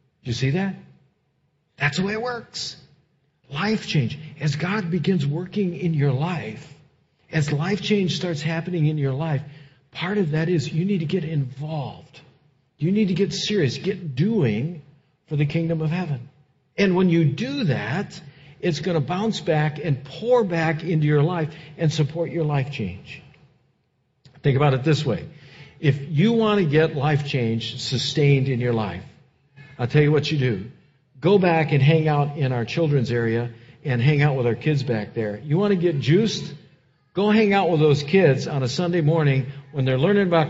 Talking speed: 185 wpm